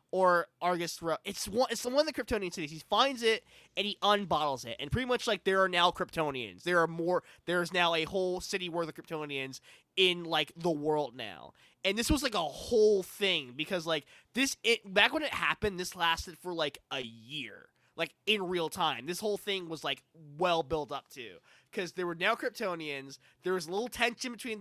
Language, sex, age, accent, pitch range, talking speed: English, male, 20-39, American, 150-190 Hz, 210 wpm